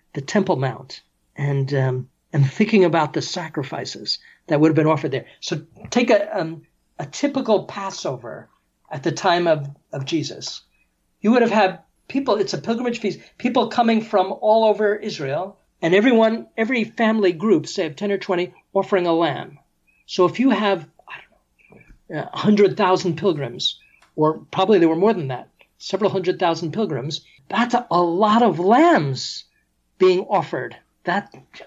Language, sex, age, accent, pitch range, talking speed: English, male, 50-69, American, 165-220 Hz, 155 wpm